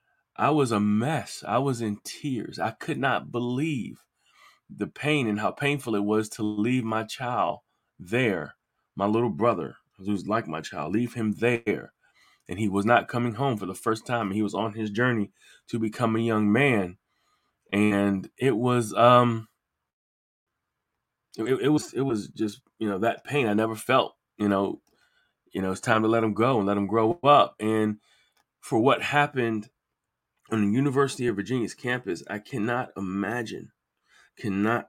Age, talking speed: 20-39, 175 wpm